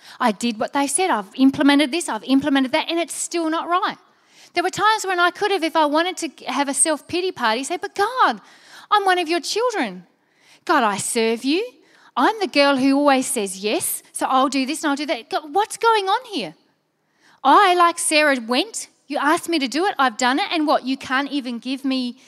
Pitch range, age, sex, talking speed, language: 255-340 Hz, 30-49, female, 220 wpm, English